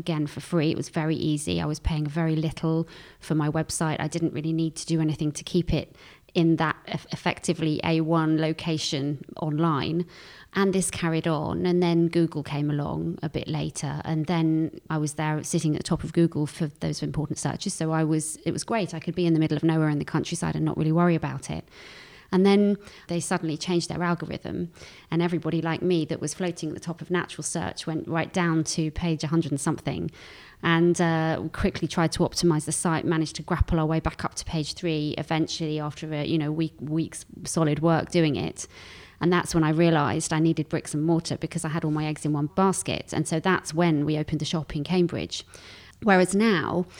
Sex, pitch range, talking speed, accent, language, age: female, 155-170 Hz, 215 wpm, British, English, 20-39